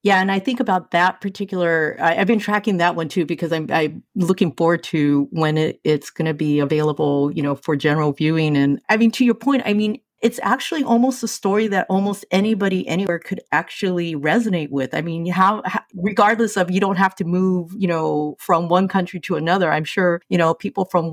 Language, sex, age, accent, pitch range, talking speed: English, female, 40-59, American, 165-200 Hz, 220 wpm